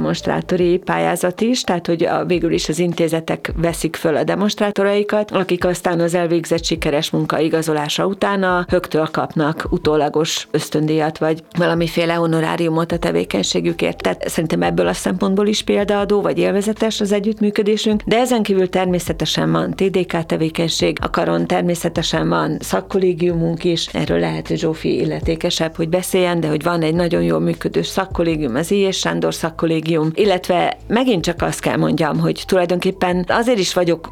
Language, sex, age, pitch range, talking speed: Hungarian, female, 40-59, 155-185 Hz, 145 wpm